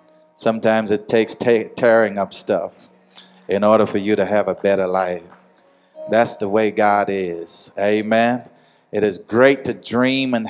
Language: English